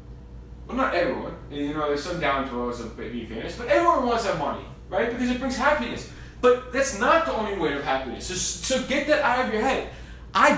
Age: 20-39